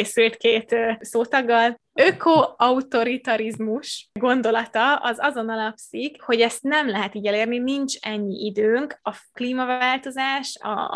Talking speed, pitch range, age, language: 120 wpm, 210-235 Hz, 20-39, Hungarian